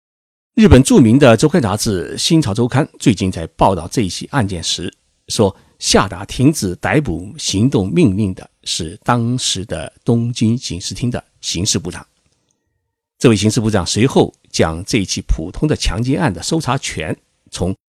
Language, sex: Chinese, male